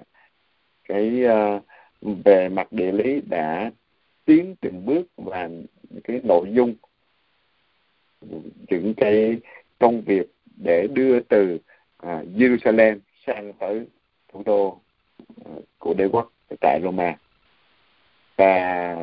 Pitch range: 95-120 Hz